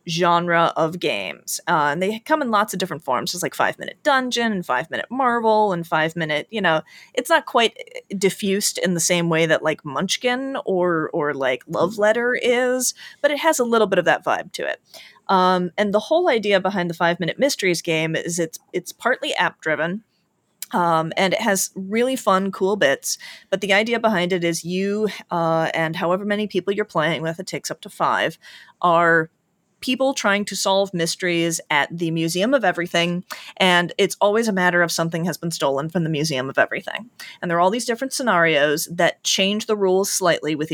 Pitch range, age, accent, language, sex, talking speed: 170-210 Hz, 30-49, American, English, female, 205 wpm